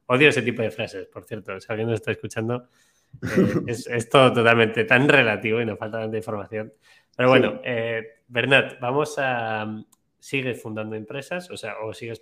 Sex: male